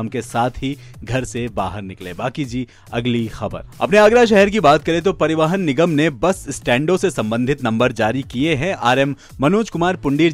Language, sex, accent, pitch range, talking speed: Hindi, male, native, 125-165 Hz, 190 wpm